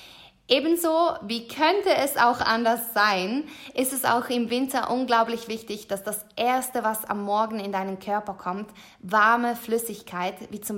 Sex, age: female, 20-39